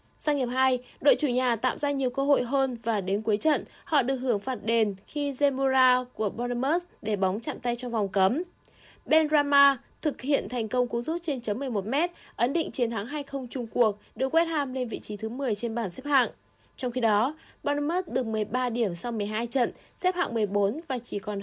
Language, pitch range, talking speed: Vietnamese, 220-285 Hz, 220 wpm